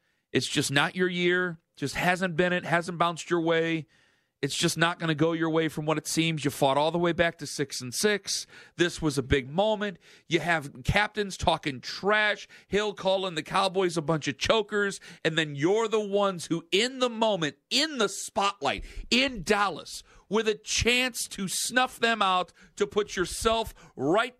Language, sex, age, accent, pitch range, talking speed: English, male, 40-59, American, 160-205 Hz, 190 wpm